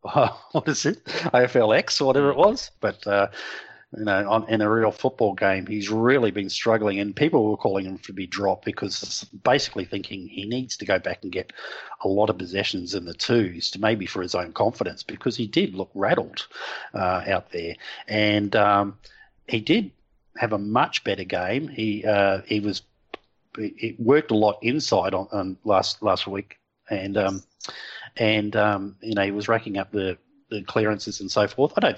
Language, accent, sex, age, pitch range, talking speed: English, Australian, male, 40-59, 95-110 Hz, 195 wpm